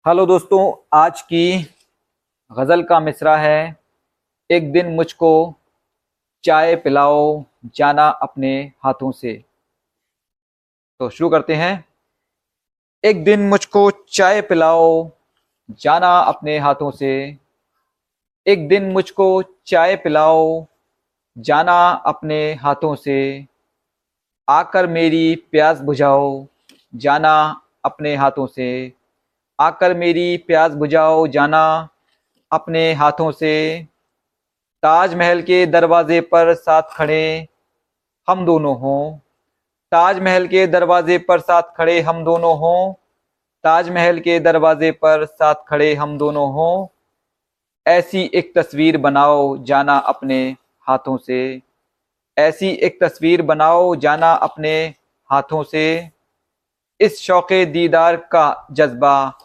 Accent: native